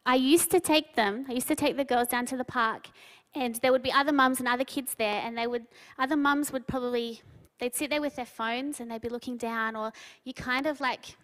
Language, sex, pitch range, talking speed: English, female, 235-300 Hz, 255 wpm